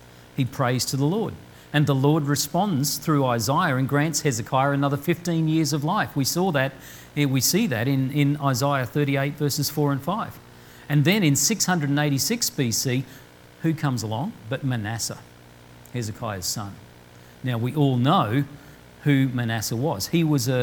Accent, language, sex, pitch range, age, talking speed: Australian, English, male, 120-155 Hz, 50-69, 155 wpm